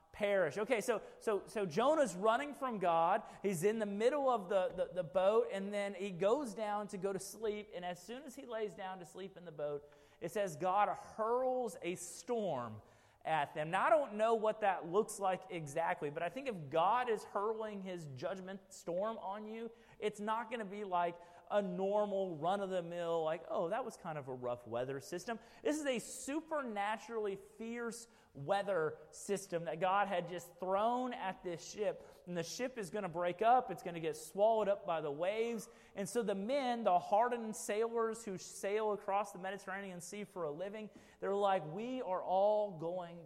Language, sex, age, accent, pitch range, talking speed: English, male, 30-49, American, 175-220 Hz, 195 wpm